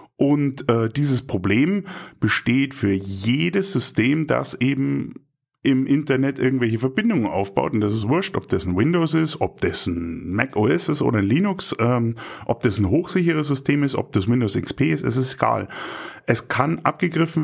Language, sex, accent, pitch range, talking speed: German, male, German, 110-150 Hz, 175 wpm